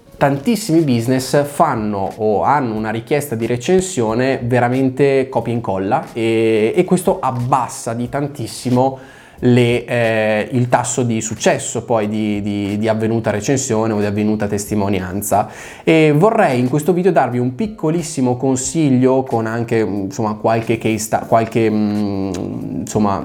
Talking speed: 125 wpm